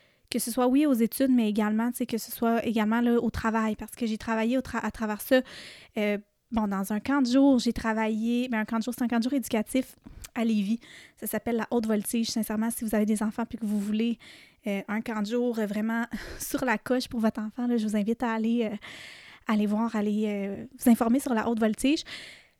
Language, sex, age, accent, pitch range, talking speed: French, female, 20-39, Canadian, 215-245 Hz, 245 wpm